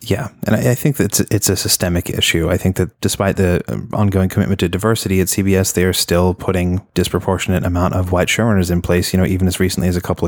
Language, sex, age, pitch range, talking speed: English, male, 20-39, 90-100 Hz, 240 wpm